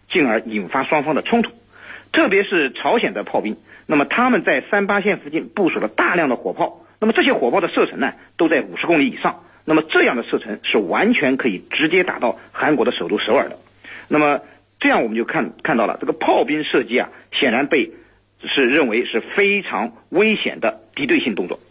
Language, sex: Chinese, male